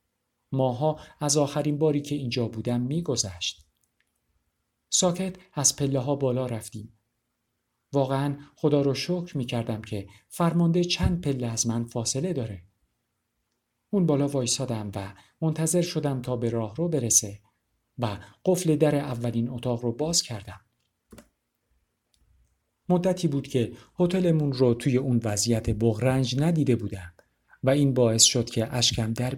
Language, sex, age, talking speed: Persian, male, 50-69, 130 wpm